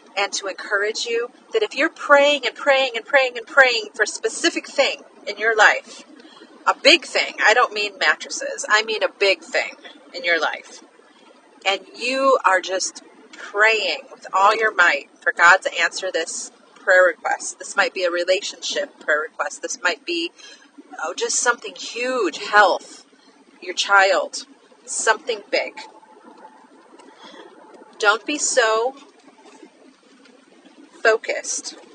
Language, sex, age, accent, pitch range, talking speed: English, female, 40-59, American, 190-295 Hz, 140 wpm